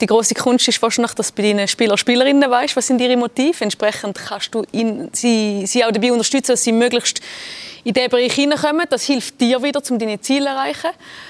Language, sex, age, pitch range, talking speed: German, female, 30-49, 210-260 Hz, 225 wpm